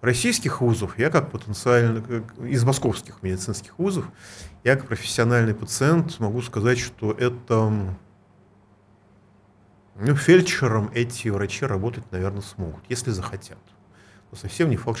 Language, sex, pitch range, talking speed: Russian, male, 100-130 Hz, 120 wpm